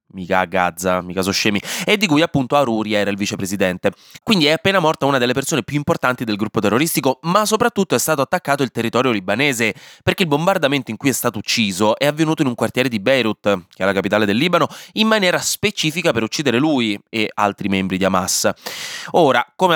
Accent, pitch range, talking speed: native, 110-165 Hz, 205 wpm